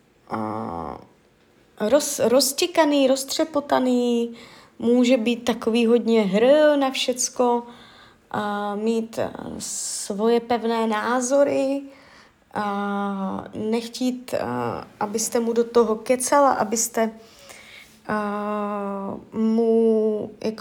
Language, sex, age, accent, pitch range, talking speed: Czech, female, 20-39, native, 215-255 Hz, 70 wpm